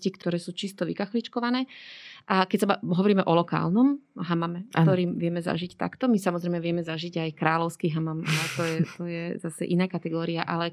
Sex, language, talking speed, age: female, Slovak, 175 wpm, 30-49